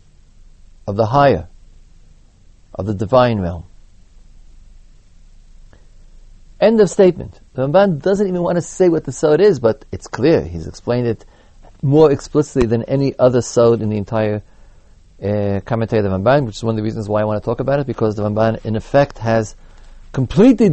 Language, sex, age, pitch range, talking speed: English, male, 40-59, 95-140 Hz, 175 wpm